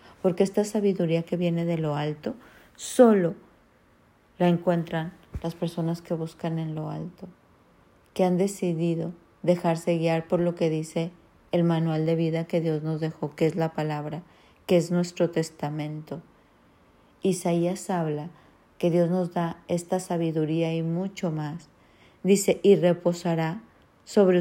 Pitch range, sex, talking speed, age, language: 160-175 Hz, female, 145 wpm, 50-69, Spanish